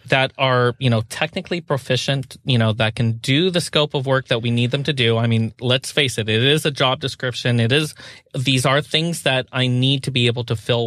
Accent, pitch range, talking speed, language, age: American, 120-150 Hz, 245 wpm, English, 30-49